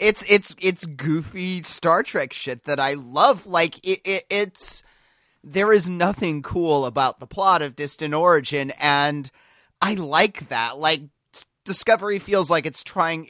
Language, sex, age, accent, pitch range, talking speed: English, male, 30-49, American, 115-165 Hz, 155 wpm